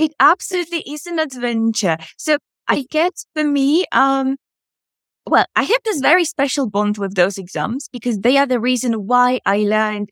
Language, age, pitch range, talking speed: English, 20-39, 205-275 Hz, 170 wpm